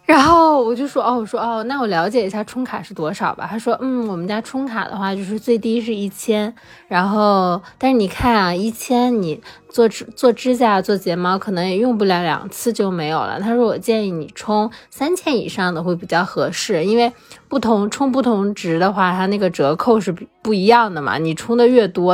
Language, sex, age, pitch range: Chinese, female, 20-39, 185-235 Hz